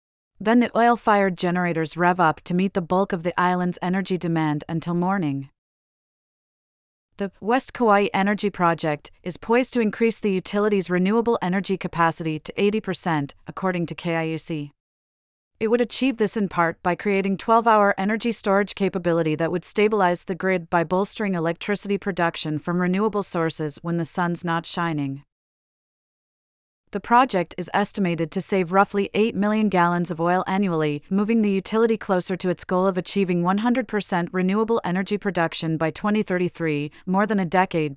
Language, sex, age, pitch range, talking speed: English, female, 30-49, 170-205 Hz, 155 wpm